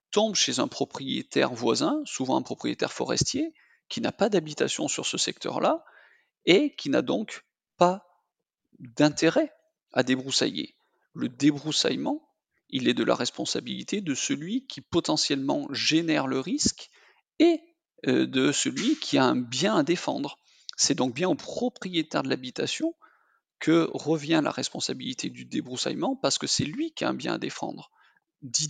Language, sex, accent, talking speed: French, male, French, 150 wpm